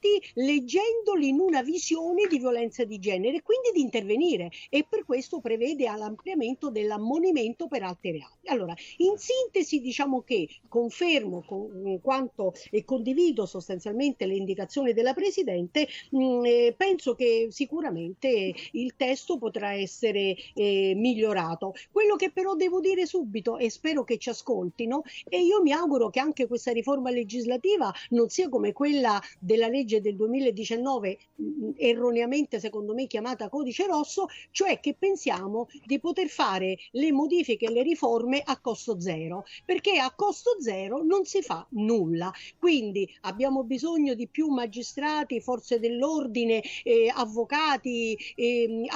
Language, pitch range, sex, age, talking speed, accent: Italian, 225-315 Hz, female, 50-69, 135 wpm, native